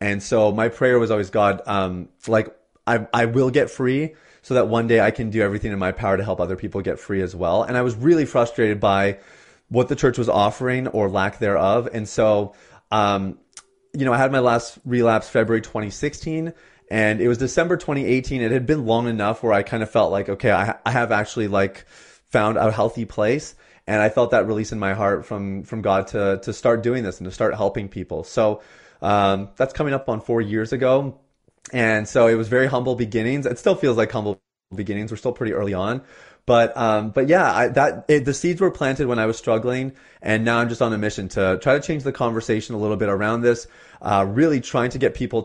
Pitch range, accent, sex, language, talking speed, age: 100-125 Hz, American, male, English, 230 wpm, 30-49